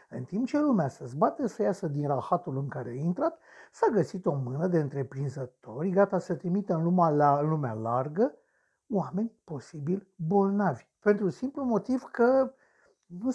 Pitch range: 145-215 Hz